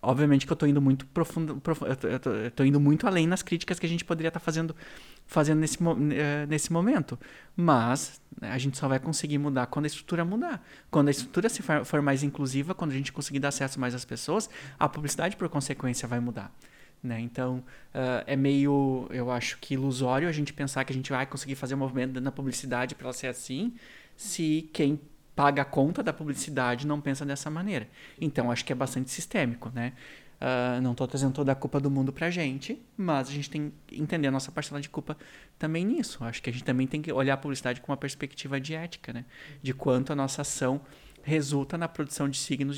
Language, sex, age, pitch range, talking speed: Portuguese, male, 20-39, 135-155 Hz, 220 wpm